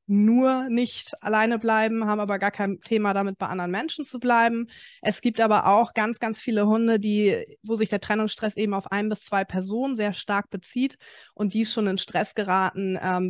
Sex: female